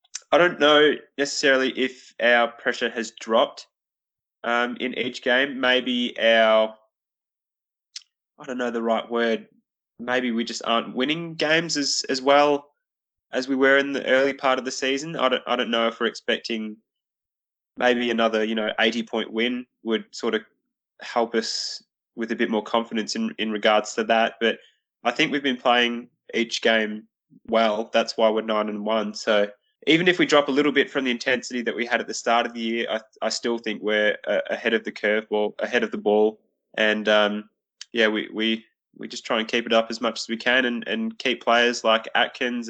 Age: 20-39